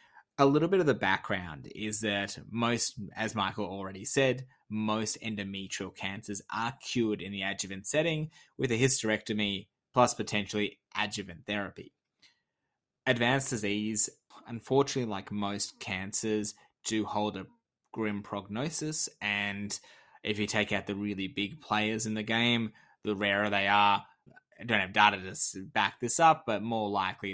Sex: male